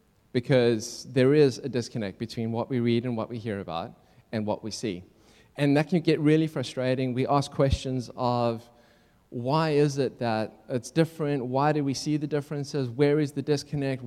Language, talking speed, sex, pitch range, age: English, 190 wpm, male, 125-145 Hz, 20-39